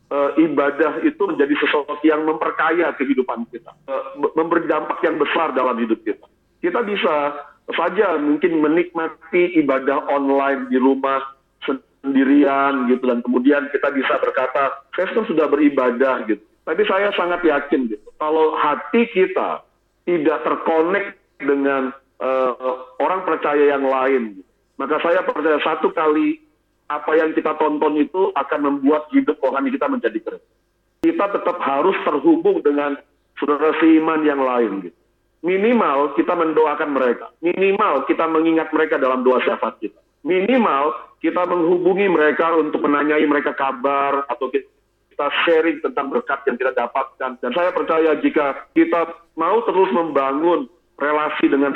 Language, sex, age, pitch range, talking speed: Indonesian, male, 50-69, 140-165 Hz, 135 wpm